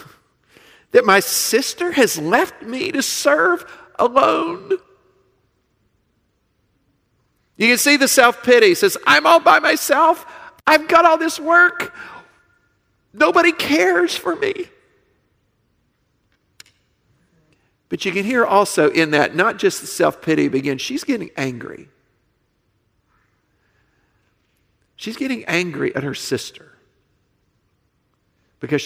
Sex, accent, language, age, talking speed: male, American, English, 50-69, 110 wpm